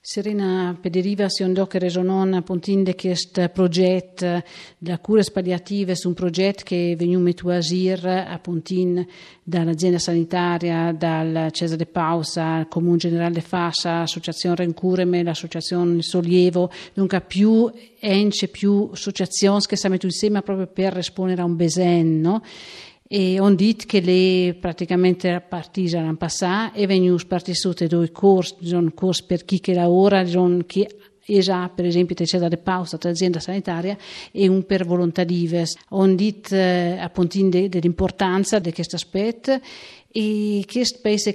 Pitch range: 175-195 Hz